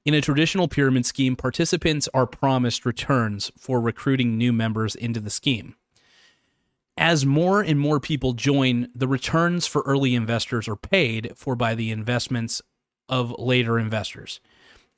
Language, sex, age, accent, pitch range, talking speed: English, male, 30-49, American, 115-145 Hz, 145 wpm